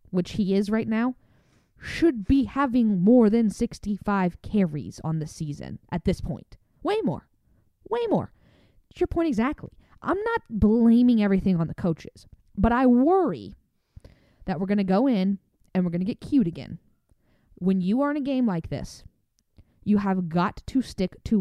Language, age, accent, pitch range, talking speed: English, 20-39, American, 190-280 Hz, 175 wpm